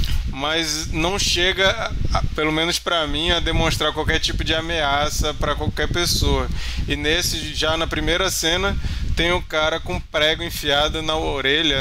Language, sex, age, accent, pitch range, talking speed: Portuguese, male, 20-39, Brazilian, 110-155 Hz, 150 wpm